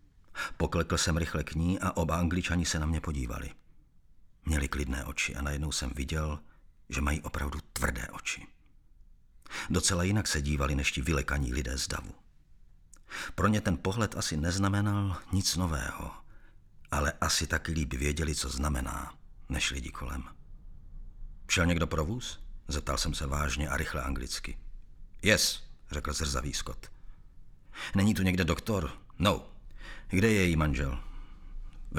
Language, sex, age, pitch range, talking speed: Czech, male, 50-69, 75-90 Hz, 145 wpm